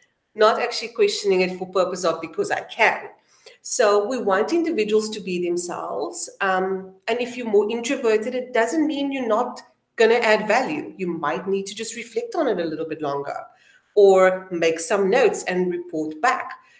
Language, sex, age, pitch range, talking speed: English, female, 40-59, 185-260 Hz, 180 wpm